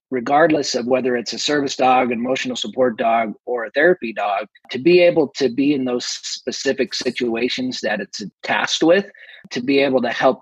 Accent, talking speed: American, 185 wpm